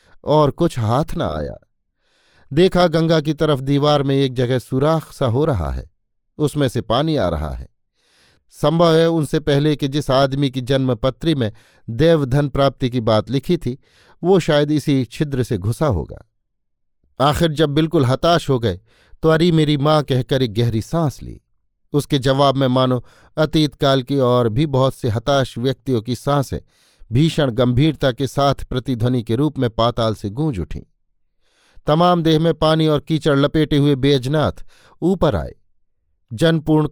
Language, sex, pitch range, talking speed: Hindi, male, 125-155 Hz, 165 wpm